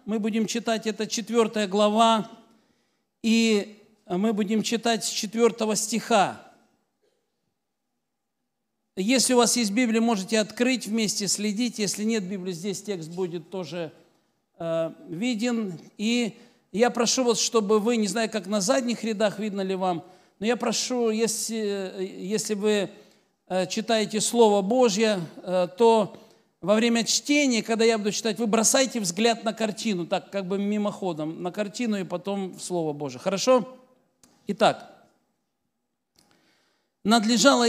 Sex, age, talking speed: male, 50-69, 130 wpm